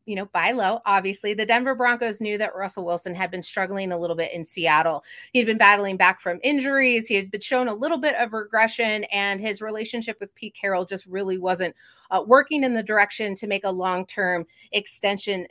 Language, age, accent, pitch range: English, 30-49, American, 190-245 Hz